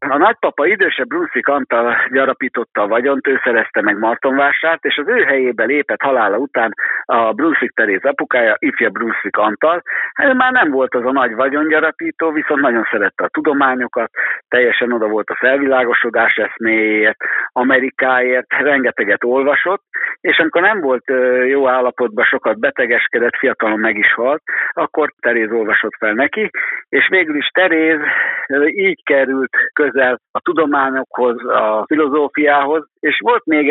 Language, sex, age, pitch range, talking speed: Hungarian, male, 60-79, 125-155 Hz, 140 wpm